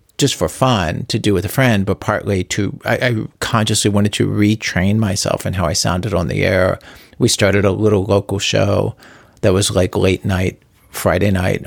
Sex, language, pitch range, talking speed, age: male, English, 95-120 Hz, 195 wpm, 40-59